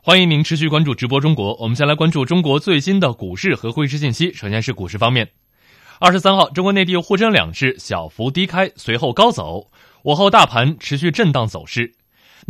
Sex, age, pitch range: male, 20-39, 110-155 Hz